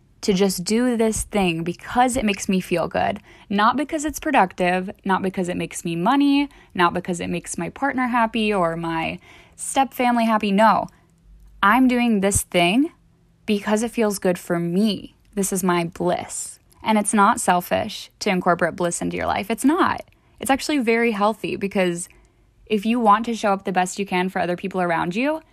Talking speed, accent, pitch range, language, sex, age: 190 wpm, American, 180-230 Hz, English, female, 10-29